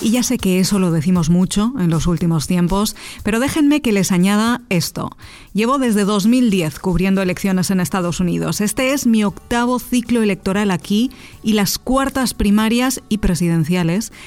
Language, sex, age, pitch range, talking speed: Spanish, female, 40-59, 180-240 Hz, 165 wpm